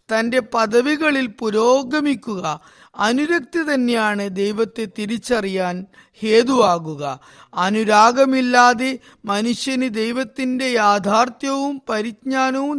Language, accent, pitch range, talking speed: Malayalam, native, 210-260 Hz, 60 wpm